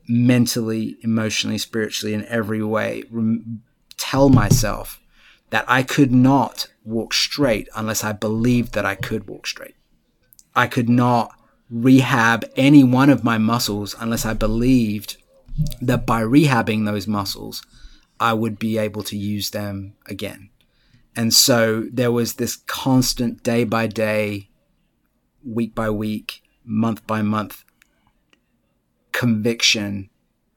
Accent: British